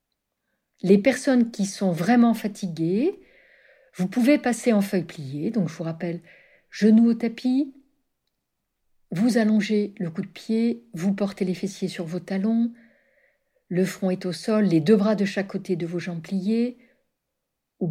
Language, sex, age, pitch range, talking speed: French, female, 60-79, 190-250 Hz, 160 wpm